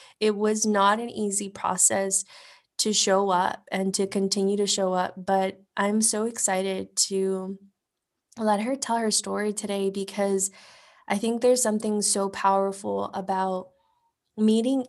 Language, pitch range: English, 190-215 Hz